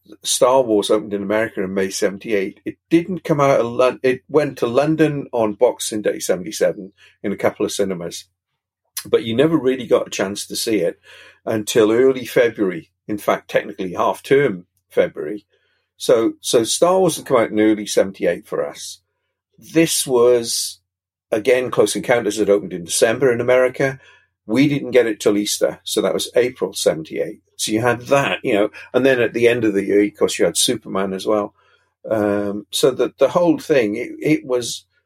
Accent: British